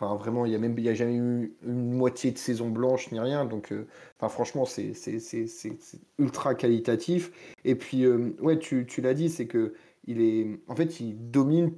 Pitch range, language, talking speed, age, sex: 115-140 Hz, French, 215 wpm, 30-49, male